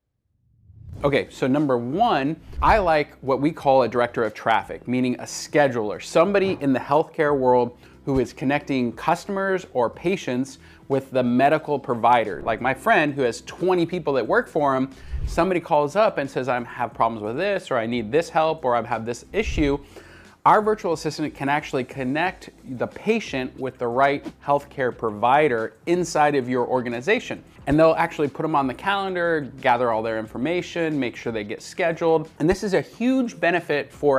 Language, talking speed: English, 180 wpm